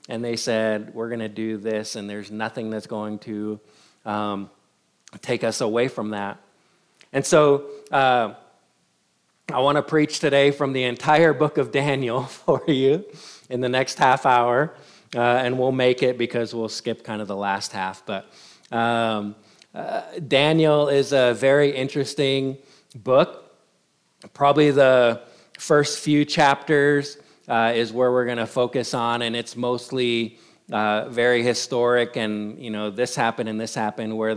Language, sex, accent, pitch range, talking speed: English, male, American, 110-135 Hz, 160 wpm